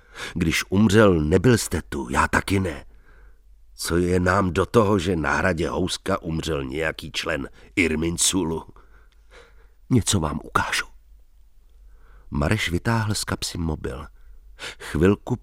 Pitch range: 80-110 Hz